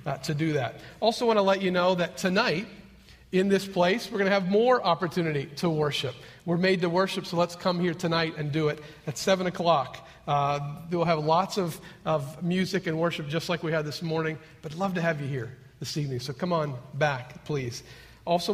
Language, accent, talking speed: English, American, 215 wpm